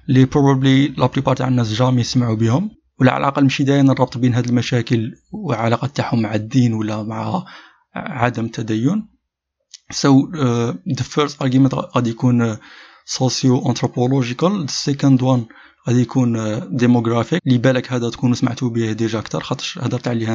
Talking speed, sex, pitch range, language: 145 wpm, male, 120-140 Hz, Arabic